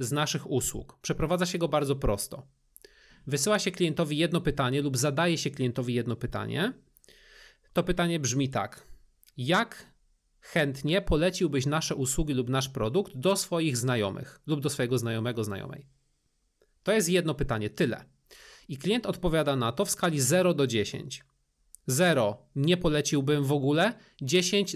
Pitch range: 130-175 Hz